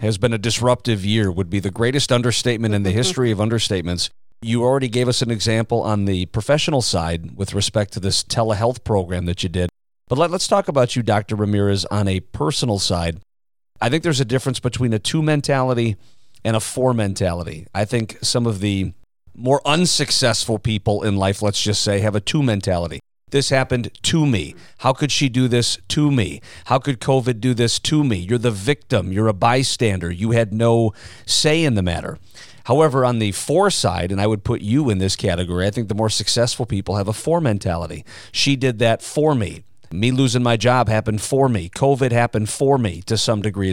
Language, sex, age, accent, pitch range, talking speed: English, male, 40-59, American, 100-130 Hz, 205 wpm